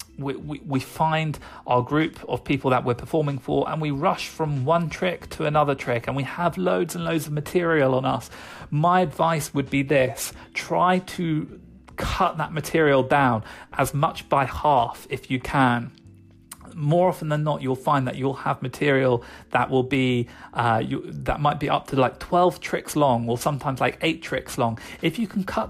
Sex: male